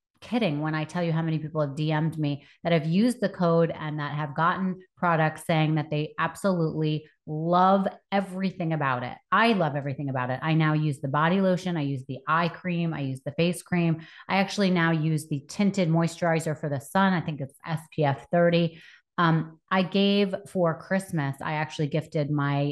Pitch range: 150-180 Hz